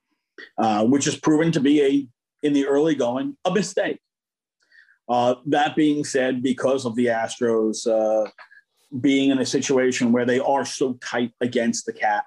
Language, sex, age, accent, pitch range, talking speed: English, male, 40-59, American, 120-155 Hz, 155 wpm